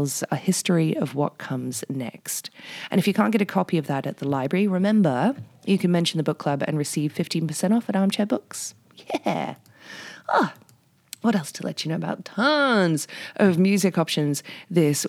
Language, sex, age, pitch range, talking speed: English, female, 30-49, 145-190 Hz, 185 wpm